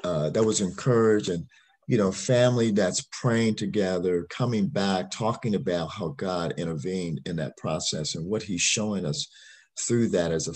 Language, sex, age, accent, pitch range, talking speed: English, male, 50-69, American, 90-125 Hz, 170 wpm